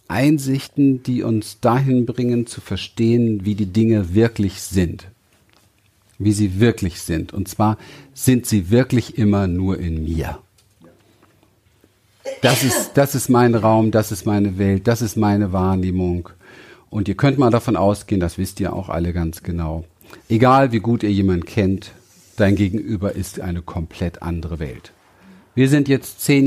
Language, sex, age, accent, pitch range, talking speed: German, male, 50-69, German, 95-120 Hz, 155 wpm